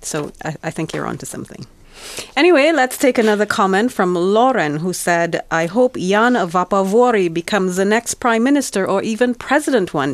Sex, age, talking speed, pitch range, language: female, 30-49, 180 wpm, 165-220 Hz, Finnish